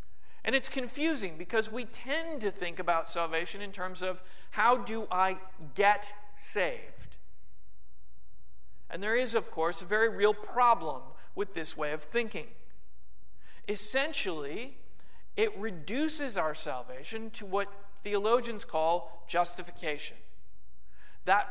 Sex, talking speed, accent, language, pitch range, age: male, 120 wpm, American, English, 175-230 Hz, 40-59